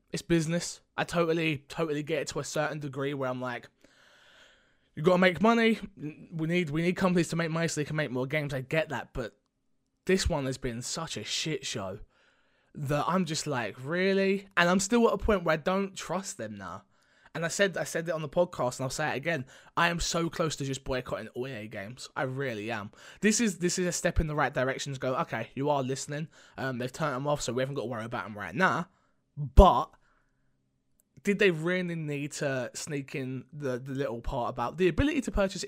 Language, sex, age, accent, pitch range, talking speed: English, male, 20-39, British, 125-170 Hz, 230 wpm